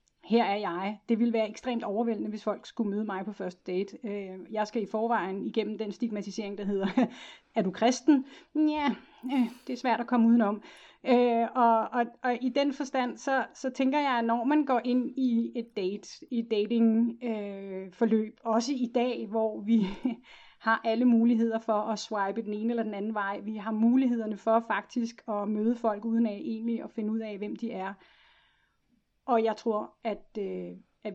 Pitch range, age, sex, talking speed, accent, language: 210-245 Hz, 30-49, female, 185 wpm, native, Danish